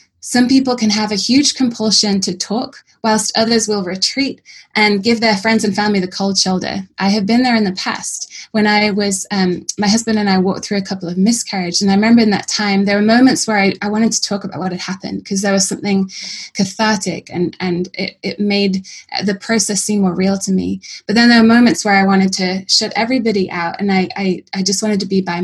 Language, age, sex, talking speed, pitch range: English, 20-39, female, 235 wpm, 190-220 Hz